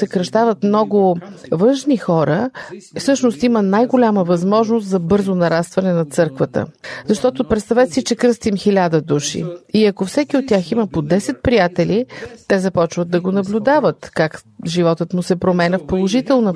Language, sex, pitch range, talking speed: Bulgarian, female, 175-235 Hz, 150 wpm